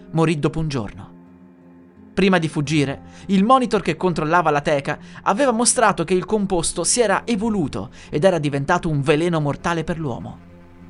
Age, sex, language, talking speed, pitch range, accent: 30-49, male, Italian, 160 wpm, 145-200 Hz, native